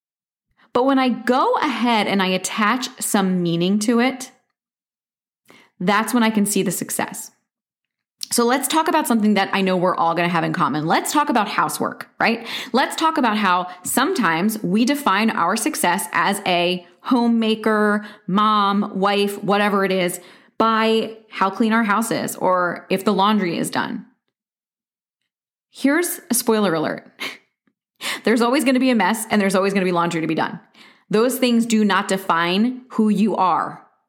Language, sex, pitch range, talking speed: English, female, 190-240 Hz, 170 wpm